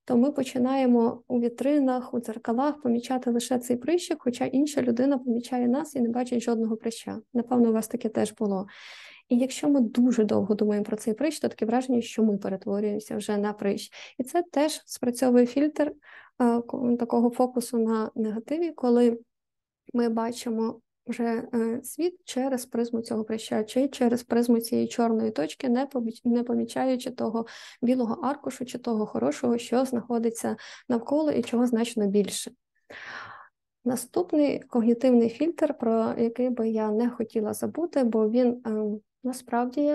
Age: 20-39